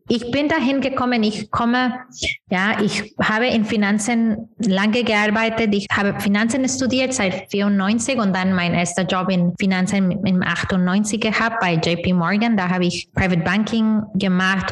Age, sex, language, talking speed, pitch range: 20-39, female, German, 155 wpm, 185-225 Hz